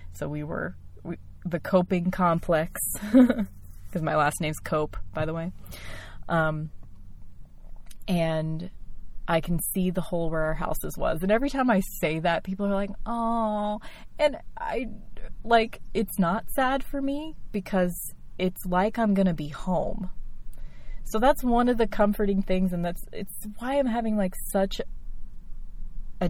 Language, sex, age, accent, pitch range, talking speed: English, female, 20-39, American, 165-210 Hz, 155 wpm